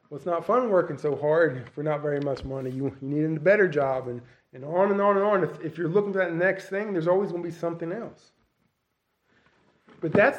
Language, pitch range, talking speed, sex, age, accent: English, 155-200 Hz, 245 wpm, male, 20-39, American